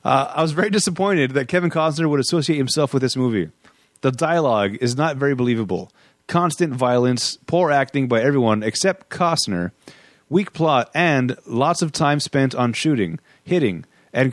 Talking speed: 165 wpm